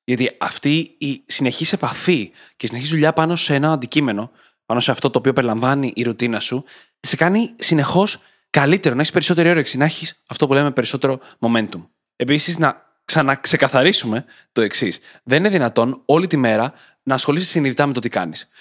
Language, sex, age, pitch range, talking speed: Greek, male, 20-39, 125-165 Hz, 175 wpm